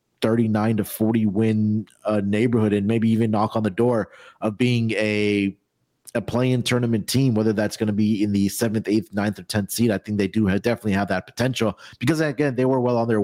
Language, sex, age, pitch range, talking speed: English, male, 30-49, 110-140 Hz, 225 wpm